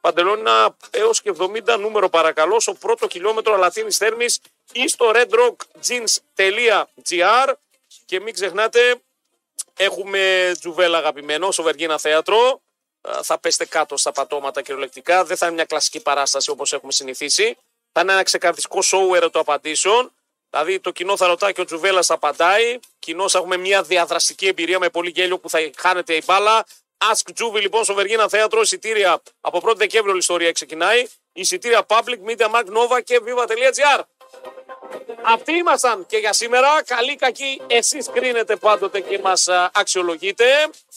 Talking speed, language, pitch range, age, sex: 145 wpm, Greek, 180-250 Hz, 40-59, male